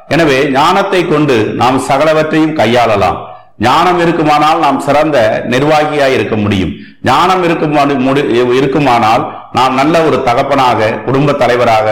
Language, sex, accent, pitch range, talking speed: Tamil, male, native, 110-150 Hz, 110 wpm